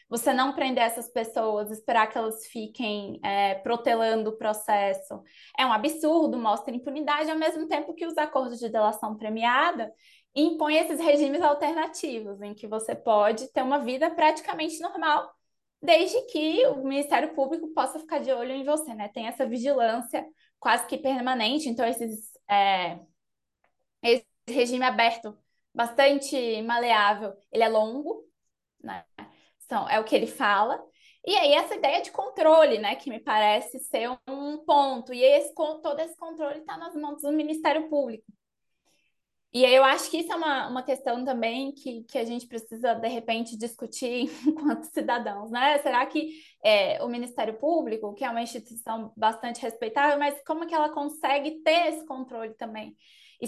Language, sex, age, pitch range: Portuguese, female, 20-39, 230-300 Hz